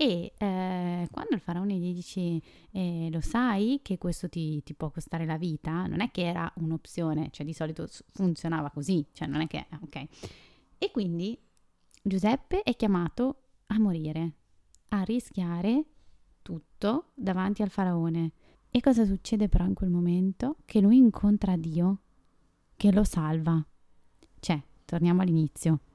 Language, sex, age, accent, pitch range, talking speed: Italian, female, 20-39, native, 165-205 Hz, 150 wpm